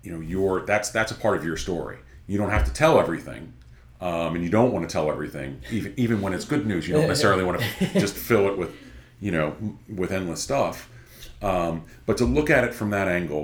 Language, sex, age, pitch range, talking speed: English, male, 40-59, 75-100 Hz, 230 wpm